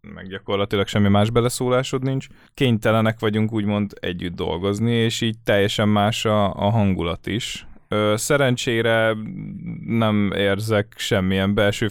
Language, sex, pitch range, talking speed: Hungarian, male, 95-115 Hz, 125 wpm